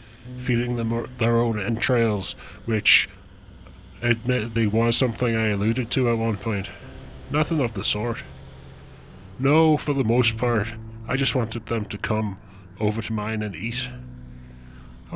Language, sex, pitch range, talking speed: English, female, 100-125 Hz, 145 wpm